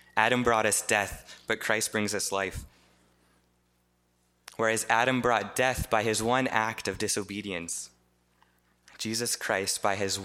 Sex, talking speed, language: male, 135 wpm, English